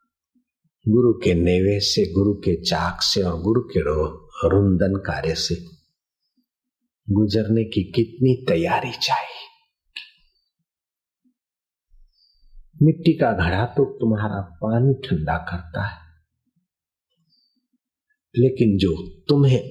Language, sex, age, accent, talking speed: Hindi, male, 50-69, native, 95 wpm